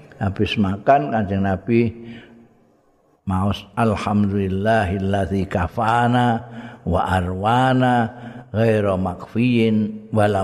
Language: Indonesian